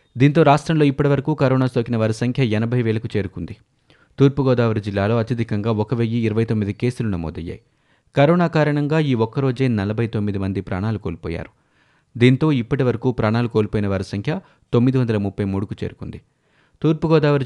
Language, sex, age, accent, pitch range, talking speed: Telugu, male, 30-49, native, 105-135 Hz, 135 wpm